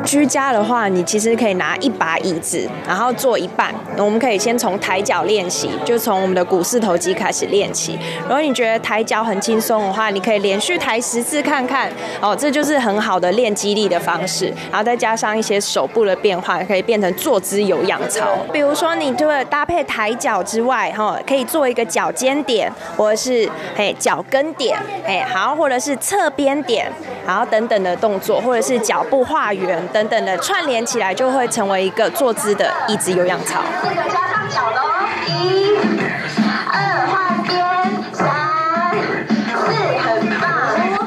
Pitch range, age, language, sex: 195-275 Hz, 20-39, Chinese, female